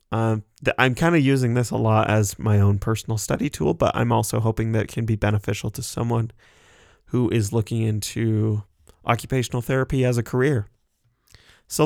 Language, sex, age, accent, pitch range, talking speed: English, male, 20-39, American, 105-125 Hz, 175 wpm